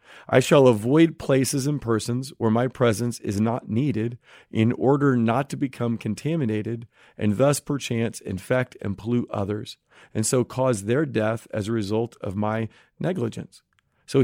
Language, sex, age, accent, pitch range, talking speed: English, male, 40-59, American, 110-135 Hz, 155 wpm